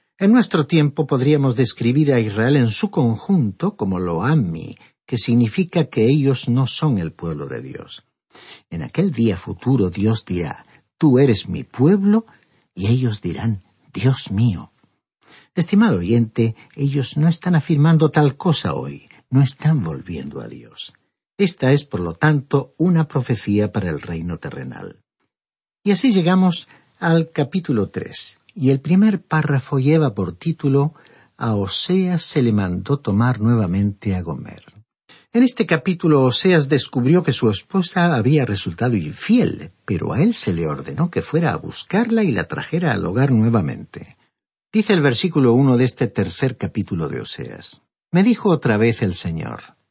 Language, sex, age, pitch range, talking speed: Spanish, male, 50-69, 110-165 Hz, 155 wpm